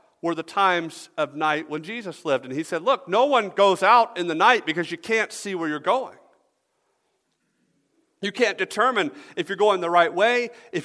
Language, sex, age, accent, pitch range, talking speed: English, male, 50-69, American, 150-210 Hz, 200 wpm